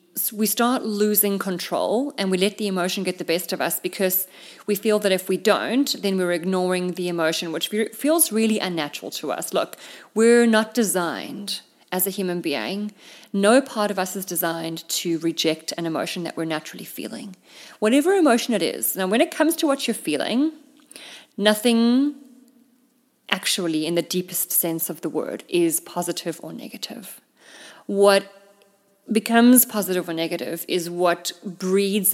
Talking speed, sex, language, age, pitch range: 160 wpm, female, English, 30-49, 175-220 Hz